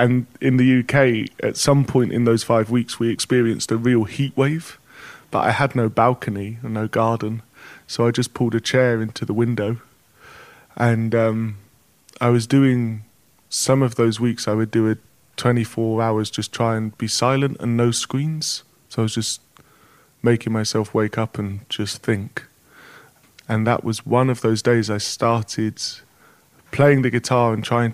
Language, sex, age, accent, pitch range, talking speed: German, male, 20-39, British, 110-120 Hz, 175 wpm